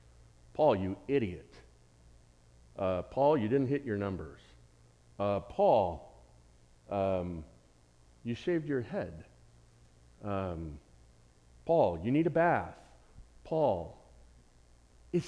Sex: male